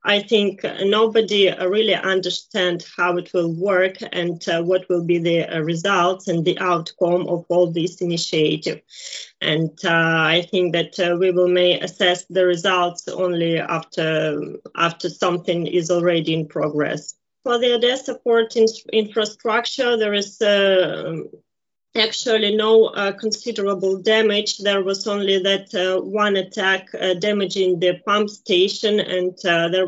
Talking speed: 145 wpm